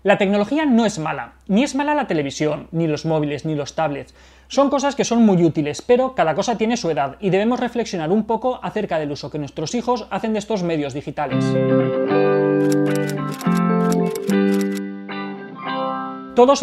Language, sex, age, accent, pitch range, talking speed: Spanish, male, 30-49, Spanish, 155-215 Hz, 160 wpm